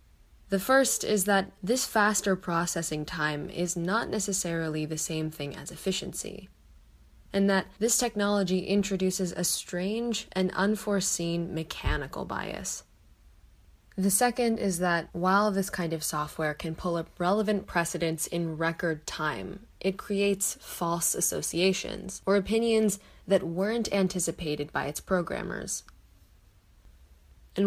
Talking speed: 125 wpm